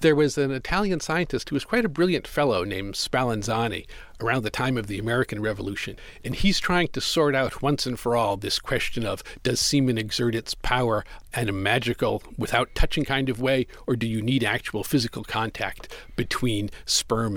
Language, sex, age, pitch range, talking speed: English, male, 50-69, 115-140 Hz, 190 wpm